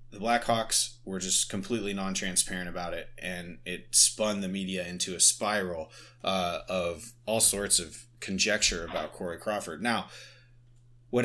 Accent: American